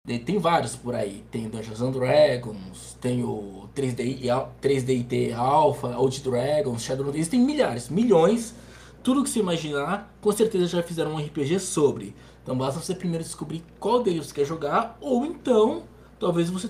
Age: 20-39